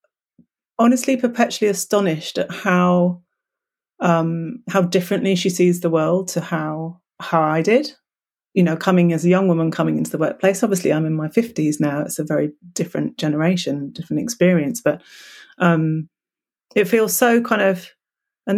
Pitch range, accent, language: 160-195 Hz, British, English